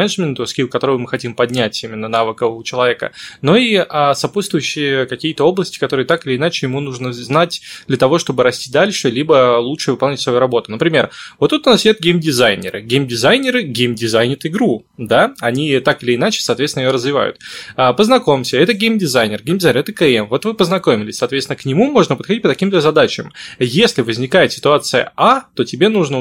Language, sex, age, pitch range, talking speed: Russian, male, 20-39, 125-180 Hz, 165 wpm